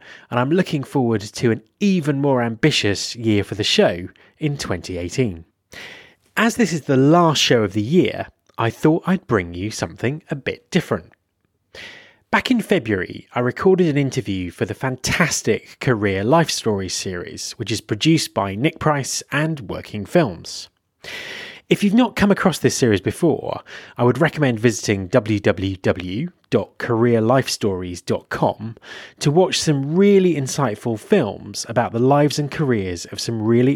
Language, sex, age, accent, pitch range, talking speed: English, male, 30-49, British, 105-165 Hz, 150 wpm